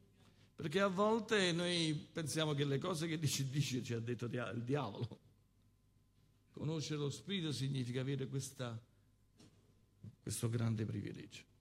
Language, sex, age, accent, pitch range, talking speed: Italian, male, 50-69, native, 110-145 Hz, 135 wpm